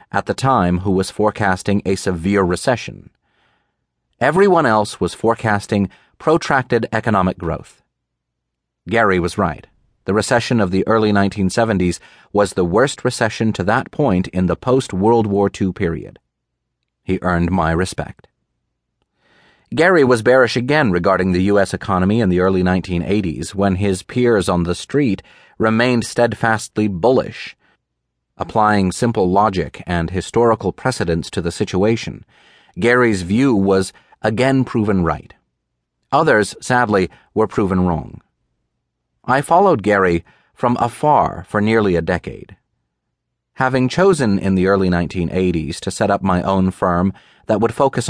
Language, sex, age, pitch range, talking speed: English, male, 30-49, 90-115 Hz, 135 wpm